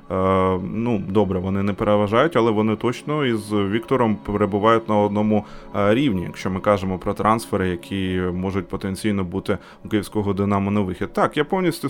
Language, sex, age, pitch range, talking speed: Ukrainian, male, 20-39, 95-120 Hz, 155 wpm